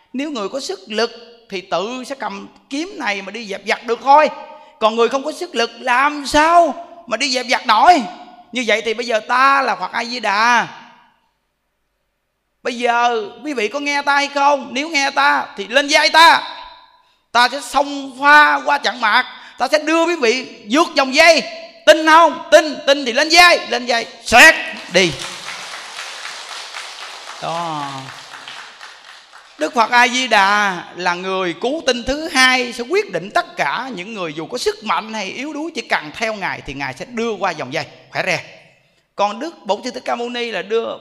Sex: male